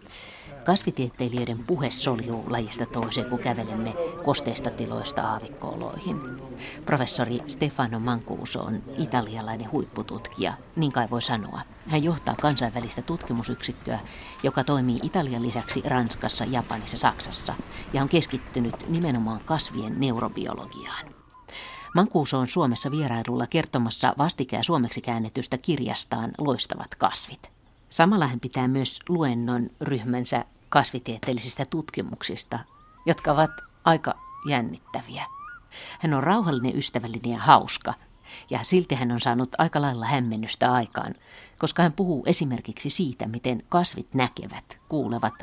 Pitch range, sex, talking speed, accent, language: 120-155 Hz, female, 110 wpm, native, Finnish